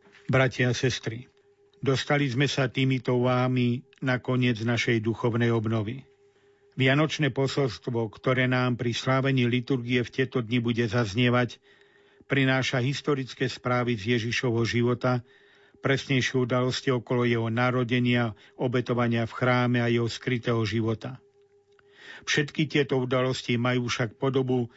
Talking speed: 120 wpm